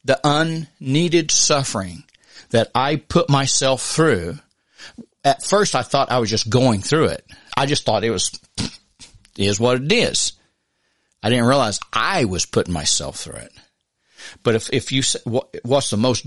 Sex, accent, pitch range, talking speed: male, American, 95-120 Hz, 160 wpm